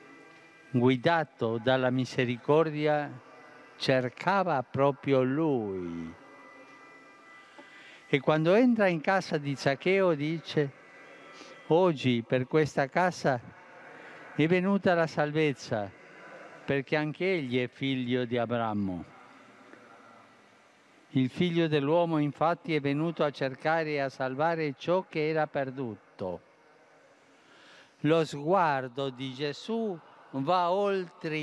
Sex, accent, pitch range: male, native, 130-170 Hz